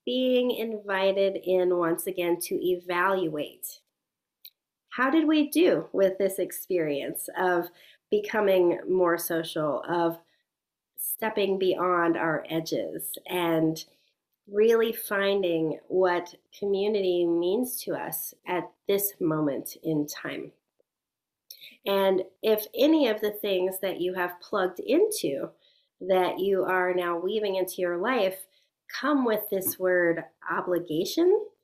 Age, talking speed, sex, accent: 40-59, 115 wpm, female, American